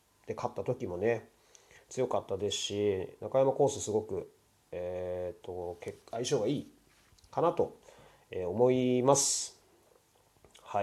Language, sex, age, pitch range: Japanese, male, 30-49, 110-150 Hz